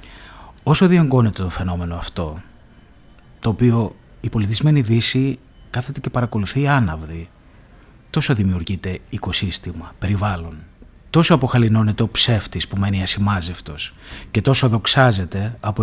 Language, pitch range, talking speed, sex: Greek, 95-130 Hz, 110 wpm, male